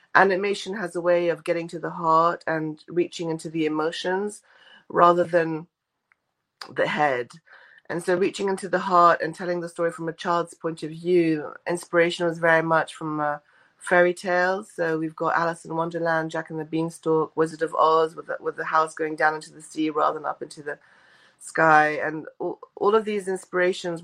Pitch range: 160-180 Hz